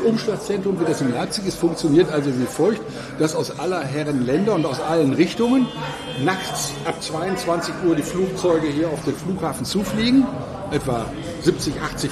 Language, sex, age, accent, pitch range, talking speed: German, male, 60-79, German, 145-190 Hz, 165 wpm